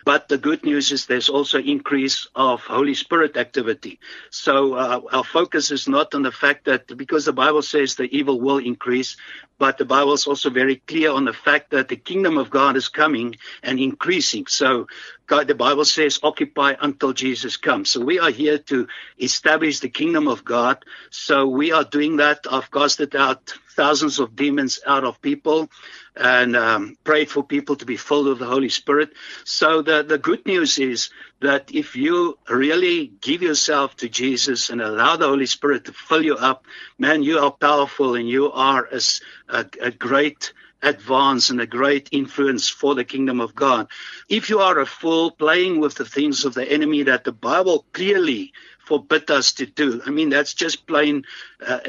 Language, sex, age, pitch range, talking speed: English, male, 60-79, 135-155 Hz, 190 wpm